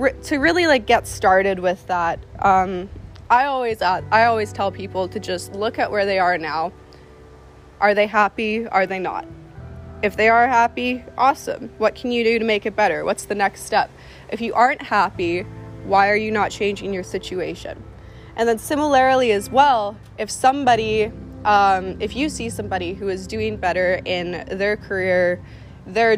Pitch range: 180-220 Hz